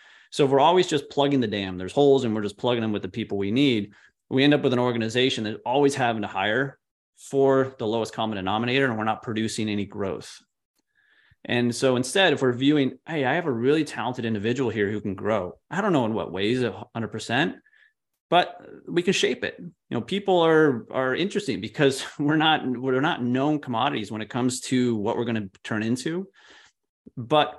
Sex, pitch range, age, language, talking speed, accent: male, 110-140 Hz, 30-49, English, 205 wpm, American